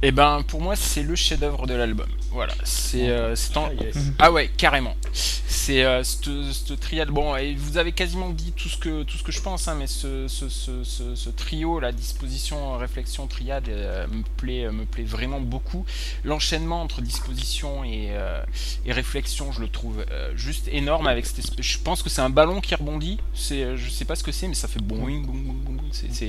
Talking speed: 205 wpm